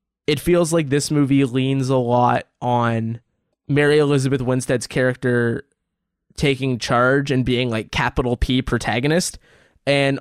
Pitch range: 125-150 Hz